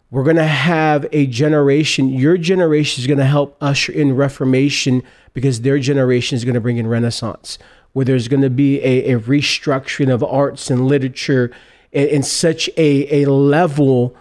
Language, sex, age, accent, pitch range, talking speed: English, male, 40-59, American, 135-160 Hz, 175 wpm